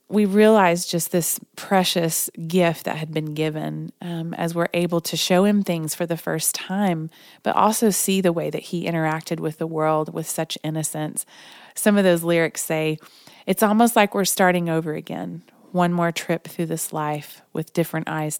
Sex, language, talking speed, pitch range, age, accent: female, English, 185 wpm, 160-185 Hz, 30-49, American